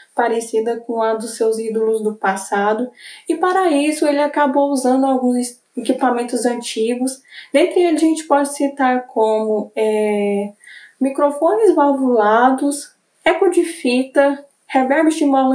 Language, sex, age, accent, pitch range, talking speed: Portuguese, female, 10-29, Brazilian, 225-285 Hz, 125 wpm